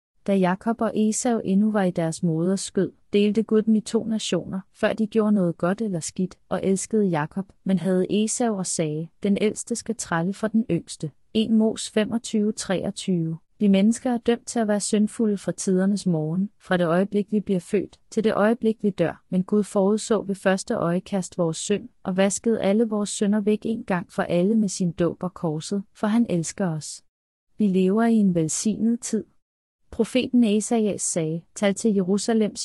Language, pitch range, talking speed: Danish, 180-215 Hz, 190 wpm